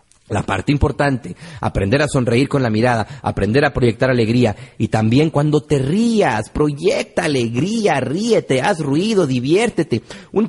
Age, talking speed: 40-59, 145 wpm